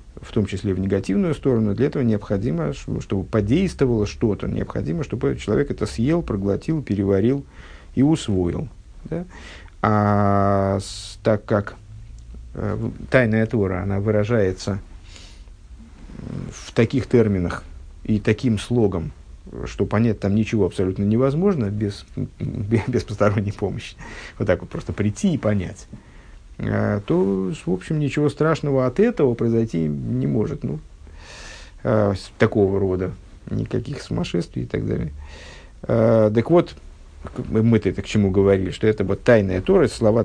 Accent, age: native, 50-69